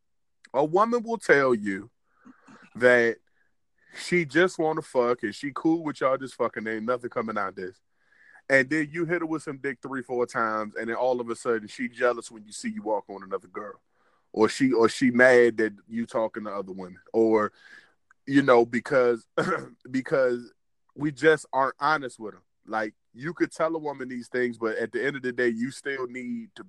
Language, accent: English, American